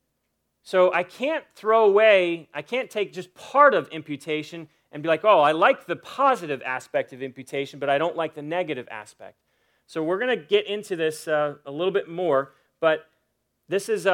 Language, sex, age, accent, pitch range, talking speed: English, male, 30-49, American, 155-210 Hz, 190 wpm